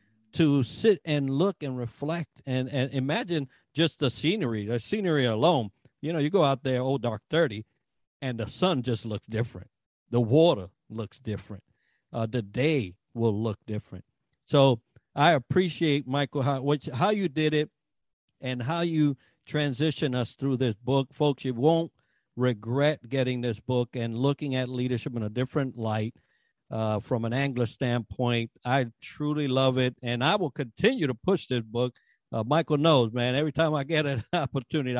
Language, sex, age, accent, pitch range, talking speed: English, male, 50-69, American, 120-150 Hz, 175 wpm